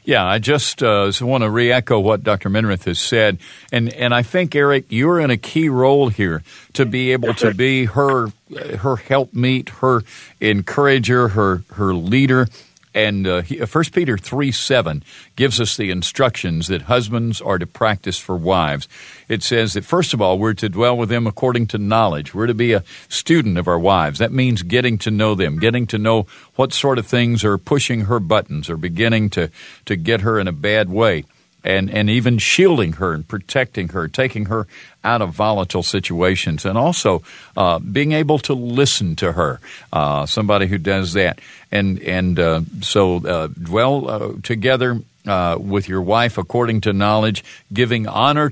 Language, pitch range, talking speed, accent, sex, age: English, 95-125 Hz, 185 wpm, American, male, 50-69